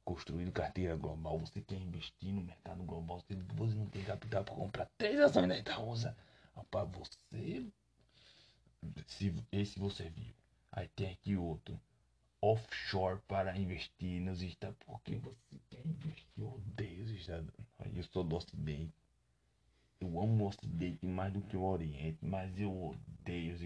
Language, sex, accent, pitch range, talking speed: Portuguese, male, Brazilian, 80-105 Hz, 150 wpm